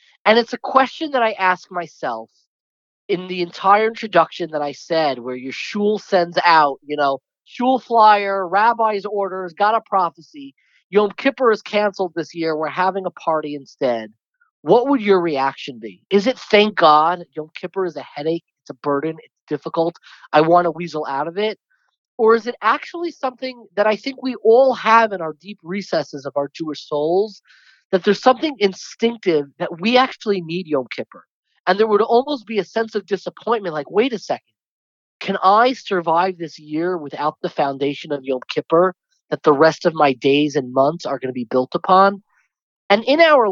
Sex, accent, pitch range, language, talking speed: male, American, 150-215 Hz, English, 190 wpm